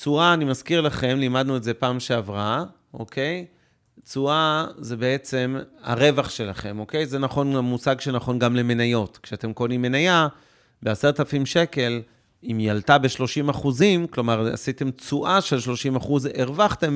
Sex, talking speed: male, 140 wpm